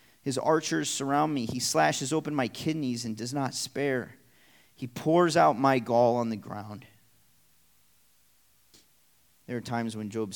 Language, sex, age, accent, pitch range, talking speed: English, male, 30-49, American, 105-125 Hz, 150 wpm